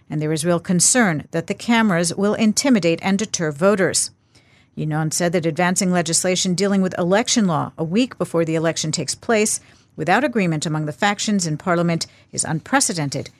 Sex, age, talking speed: female, 50-69, 170 wpm